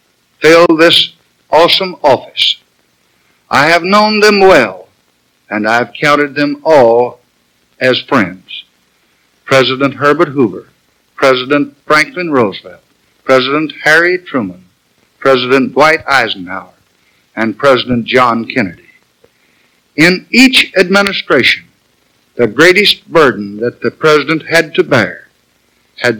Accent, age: American, 60-79